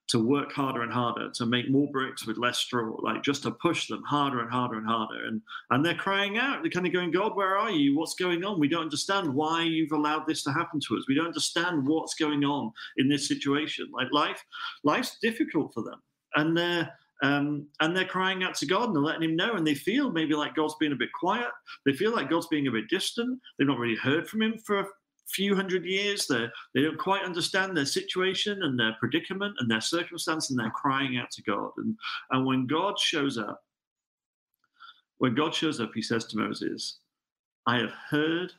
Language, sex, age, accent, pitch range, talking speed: English, male, 40-59, British, 130-190 Hz, 220 wpm